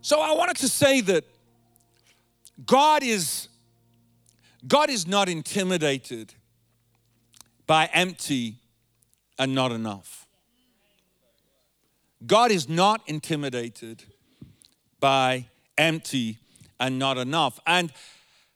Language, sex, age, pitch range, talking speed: English, male, 50-69, 135-215 Hz, 85 wpm